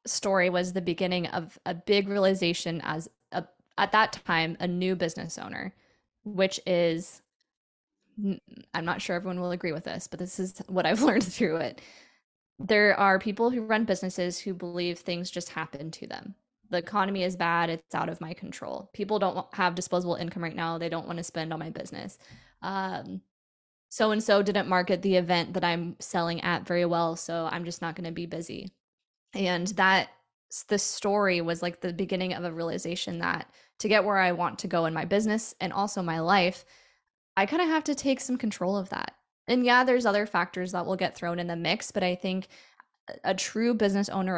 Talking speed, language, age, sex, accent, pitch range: 200 wpm, English, 10-29, female, American, 175-205 Hz